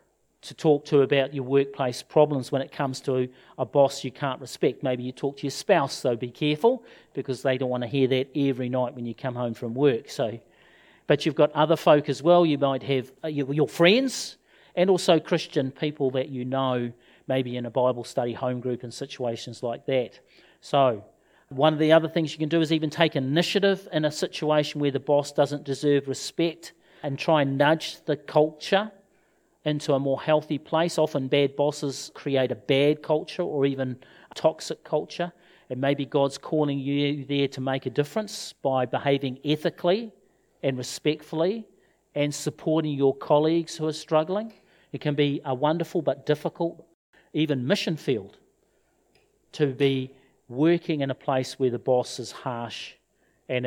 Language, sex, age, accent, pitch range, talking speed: English, male, 40-59, Australian, 135-160 Hz, 180 wpm